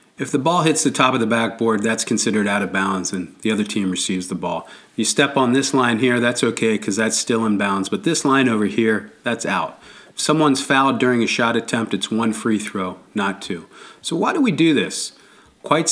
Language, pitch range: English, 100-130 Hz